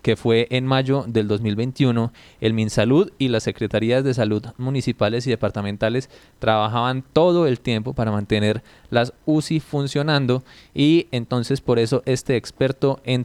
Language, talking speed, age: Spanish, 145 wpm, 20-39